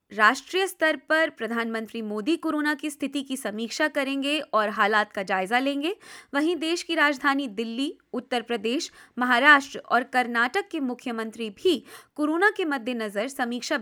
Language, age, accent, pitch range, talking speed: English, 20-39, Indian, 235-320 Hz, 150 wpm